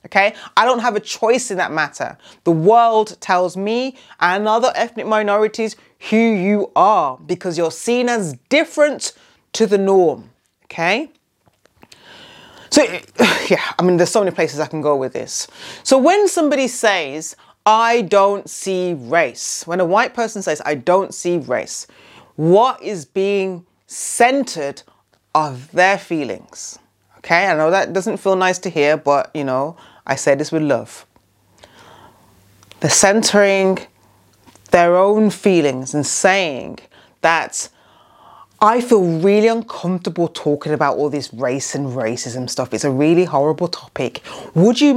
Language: English